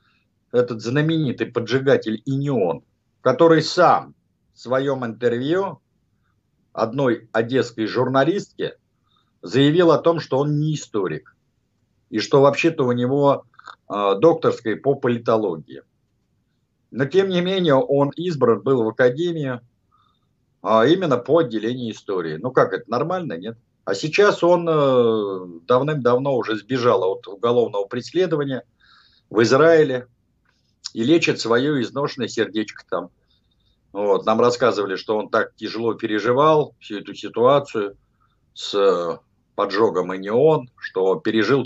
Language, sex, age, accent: Russian, male, 50-69, native